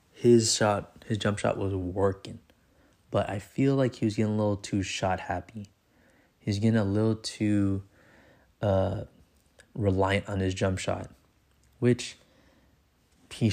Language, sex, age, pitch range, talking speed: English, male, 20-39, 95-110 Hz, 140 wpm